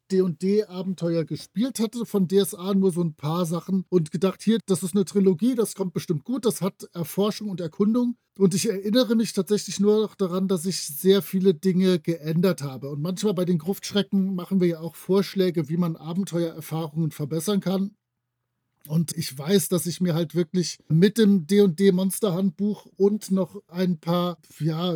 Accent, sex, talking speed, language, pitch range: German, male, 175 wpm, German, 170-200 Hz